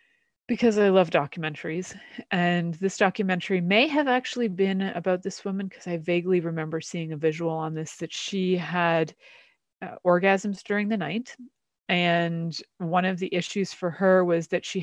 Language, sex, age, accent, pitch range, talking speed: English, female, 30-49, American, 165-190 Hz, 165 wpm